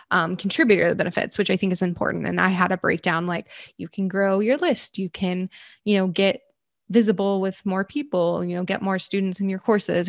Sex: female